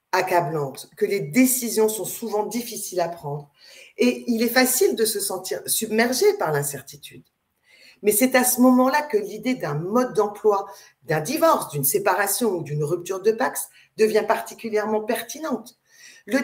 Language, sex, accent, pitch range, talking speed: French, female, French, 175-255 Hz, 155 wpm